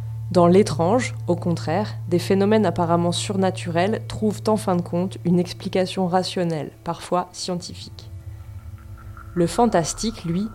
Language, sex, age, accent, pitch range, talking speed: French, female, 20-39, French, 160-195 Hz, 120 wpm